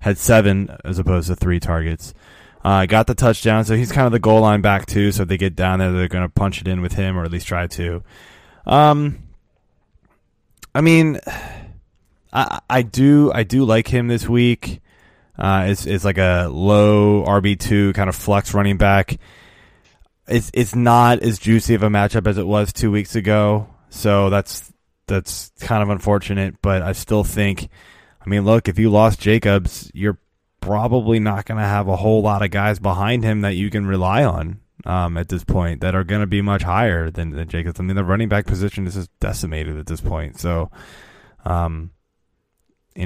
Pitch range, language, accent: 95-110 Hz, English, American